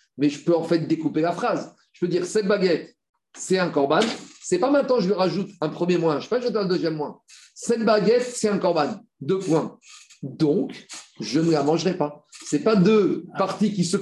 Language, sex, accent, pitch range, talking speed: French, male, French, 155-210 Hz, 225 wpm